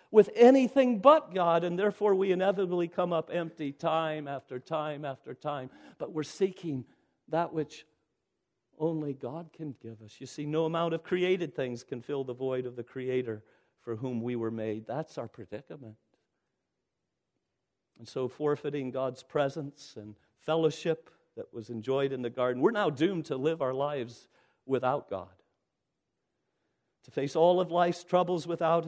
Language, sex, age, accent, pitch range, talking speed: English, male, 50-69, American, 110-155 Hz, 160 wpm